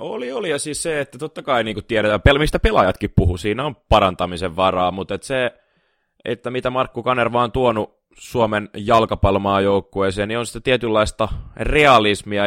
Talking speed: 160 wpm